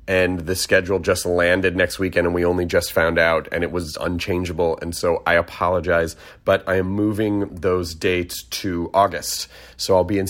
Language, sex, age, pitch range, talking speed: English, male, 30-49, 90-130 Hz, 190 wpm